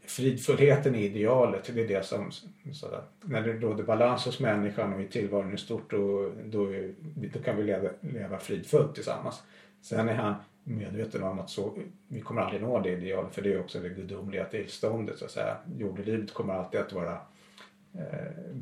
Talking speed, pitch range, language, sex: 185 wpm, 105-140 Hz, Swedish, male